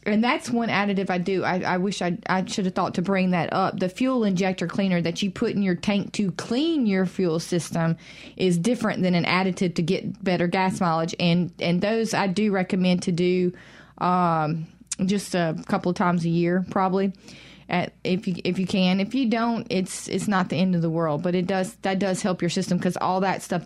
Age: 30-49